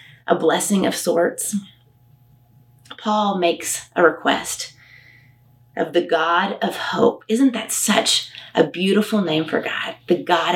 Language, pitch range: English, 130-210 Hz